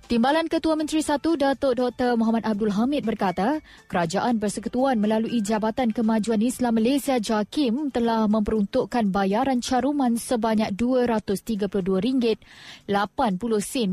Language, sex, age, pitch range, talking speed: Malay, female, 20-39, 220-260 Hz, 105 wpm